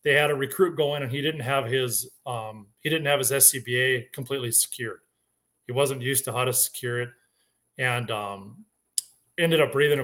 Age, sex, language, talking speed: 40-59, male, English, 190 wpm